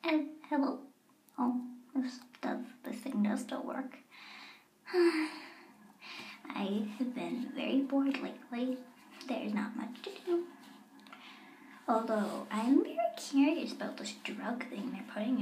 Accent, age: American, 10-29